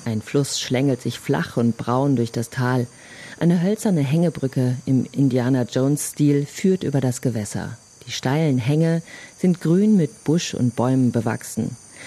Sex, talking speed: female, 145 wpm